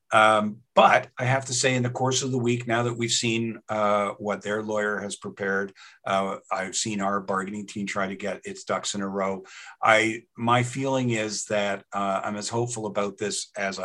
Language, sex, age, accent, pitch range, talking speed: English, male, 50-69, American, 100-120 Hz, 210 wpm